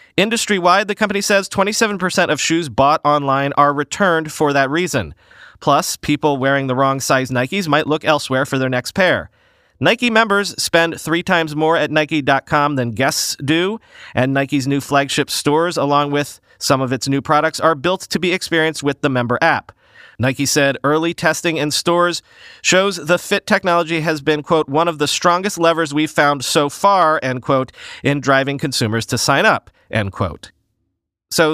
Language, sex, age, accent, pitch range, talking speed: English, male, 30-49, American, 135-175 Hz, 175 wpm